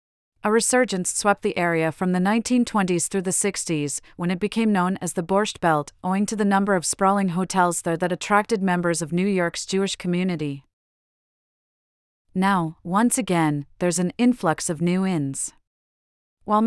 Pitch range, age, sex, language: 165-200 Hz, 30-49, female, English